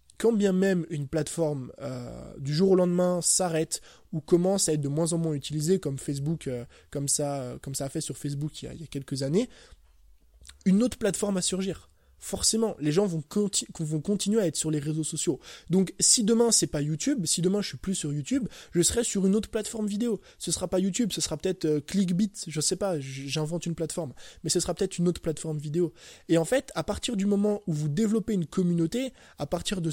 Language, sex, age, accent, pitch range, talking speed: French, male, 20-39, French, 150-195 Hz, 235 wpm